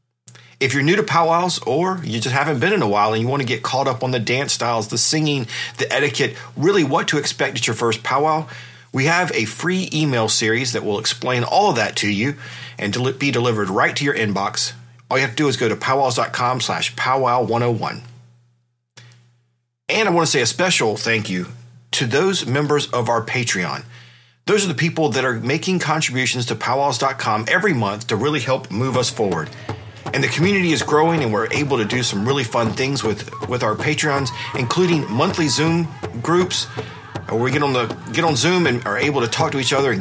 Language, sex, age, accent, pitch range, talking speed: English, male, 40-59, American, 115-150 Hz, 210 wpm